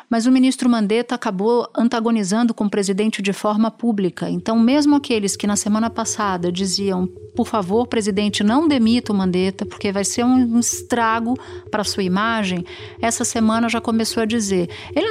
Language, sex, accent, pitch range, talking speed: Portuguese, female, Brazilian, 205-240 Hz, 170 wpm